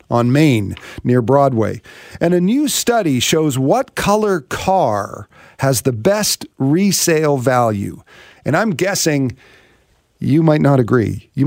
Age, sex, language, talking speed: 40-59, male, English, 130 wpm